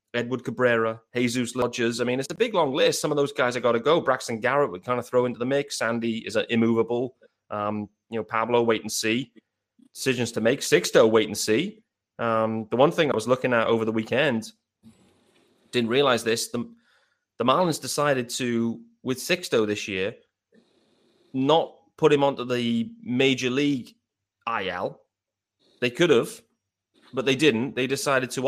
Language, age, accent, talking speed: English, 30-49, British, 180 wpm